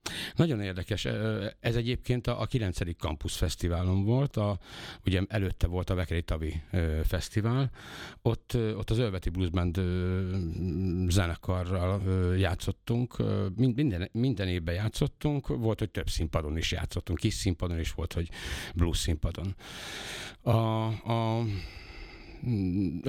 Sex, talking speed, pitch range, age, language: male, 115 wpm, 85-110 Hz, 60-79, Hungarian